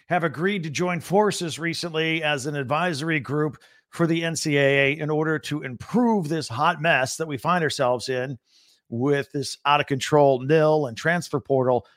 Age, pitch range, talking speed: 50-69, 130-180 Hz, 160 wpm